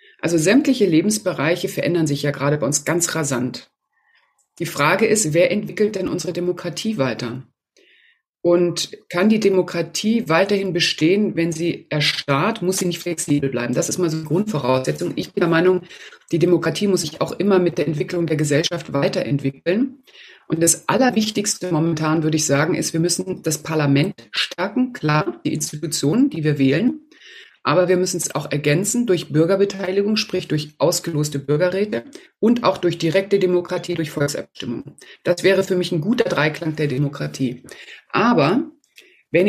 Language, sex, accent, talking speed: German, female, German, 160 wpm